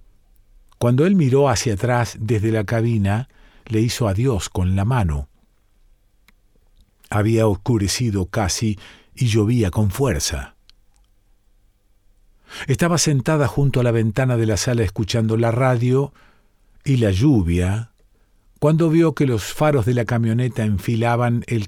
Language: Spanish